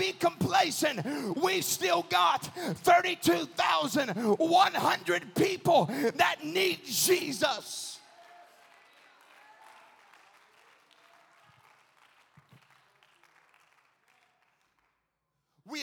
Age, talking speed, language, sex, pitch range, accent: 40-59, 40 wpm, English, male, 270-315 Hz, American